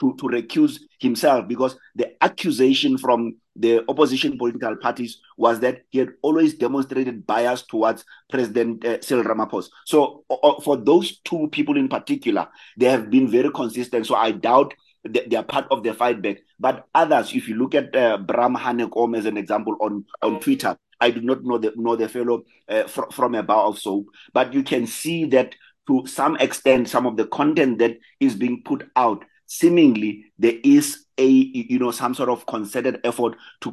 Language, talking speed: English, 190 wpm